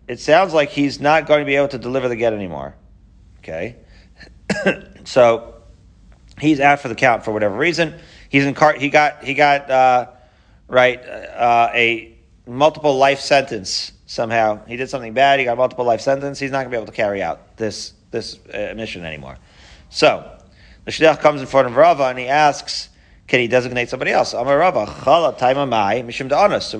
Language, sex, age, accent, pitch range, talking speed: English, male, 40-59, American, 110-145 Hz, 185 wpm